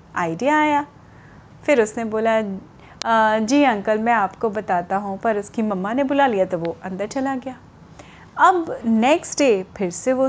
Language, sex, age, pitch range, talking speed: Hindi, female, 30-49, 200-255 Hz, 165 wpm